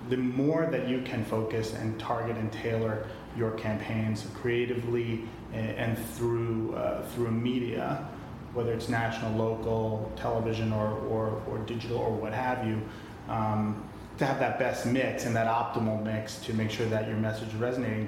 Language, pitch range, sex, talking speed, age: English, 110-120 Hz, male, 165 wpm, 30-49